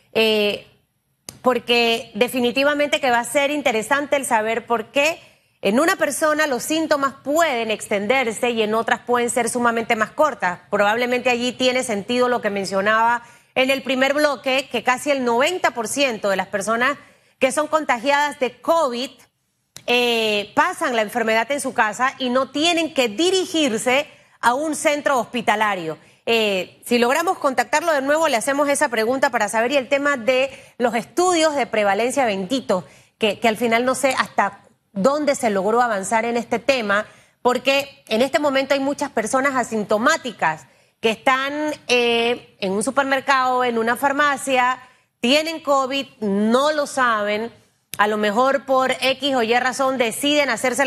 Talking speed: 155 wpm